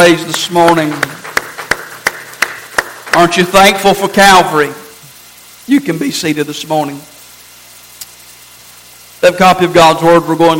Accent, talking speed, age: American, 120 wpm, 50-69